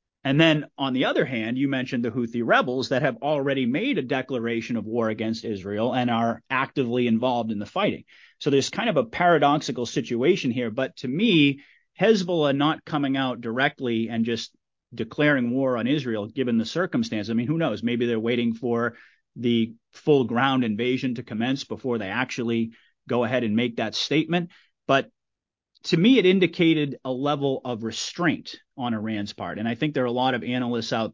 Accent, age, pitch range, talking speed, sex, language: American, 30-49, 115-140 Hz, 190 wpm, male, English